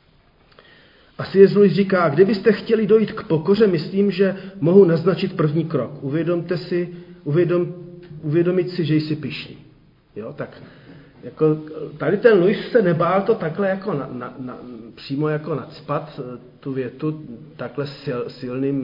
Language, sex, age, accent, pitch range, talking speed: Czech, male, 40-59, native, 145-190 Hz, 135 wpm